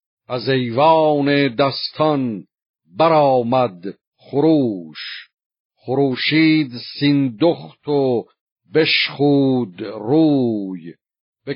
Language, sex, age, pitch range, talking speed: Persian, male, 50-69, 120-145 Hz, 55 wpm